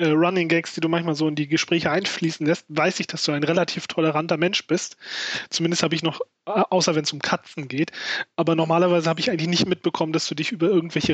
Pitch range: 160-185 Hz